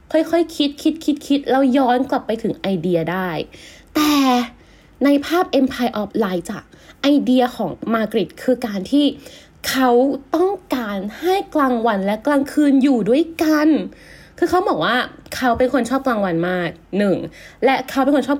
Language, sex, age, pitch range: Thai, female, 20-39, 205-285 Hz